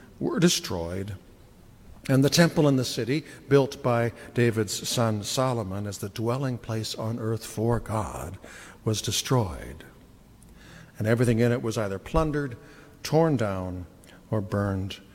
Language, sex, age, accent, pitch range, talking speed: English, male, 60-79, American, 110-145 Hz, 135 wpm